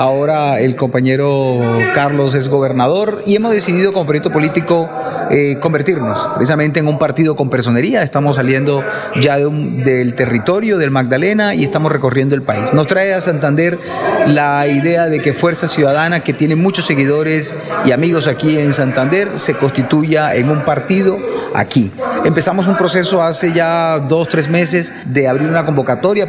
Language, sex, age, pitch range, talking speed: Spanish, male, 30-49, 135-170 Hz, 160 wpm